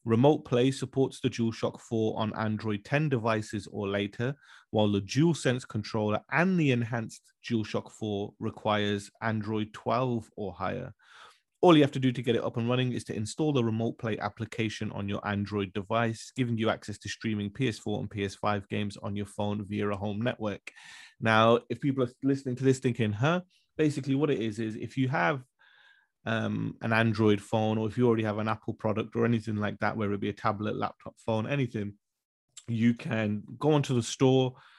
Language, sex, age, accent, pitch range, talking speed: English, male, 30-49, British, 105-125 Hz, 190 wpm